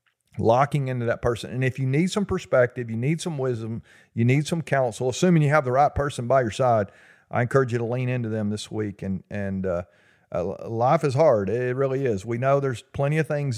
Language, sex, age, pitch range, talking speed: English, male, 40-59, 115-140 Hz, 230 wpm